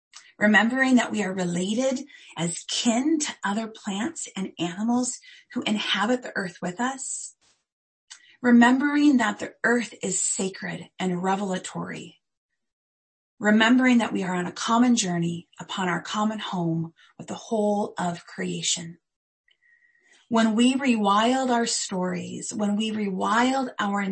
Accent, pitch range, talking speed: American, 175-240 Hz, 130 wpm